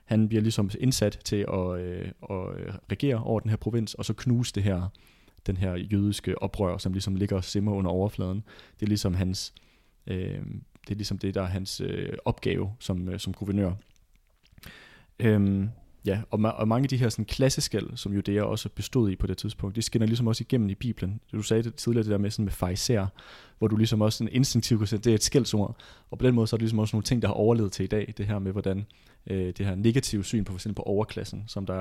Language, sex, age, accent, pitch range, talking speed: Danish, male, 30-49, native, 95-115 Hz, 240 wpm